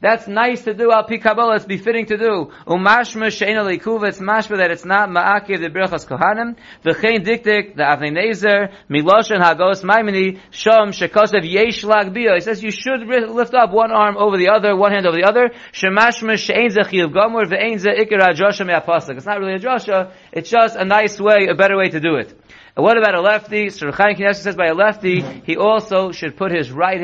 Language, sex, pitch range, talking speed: English, male, 175-215 Hz, 135 wpm